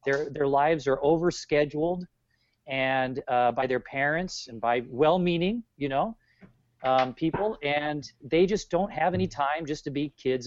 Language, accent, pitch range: English, American, 125-155 Hz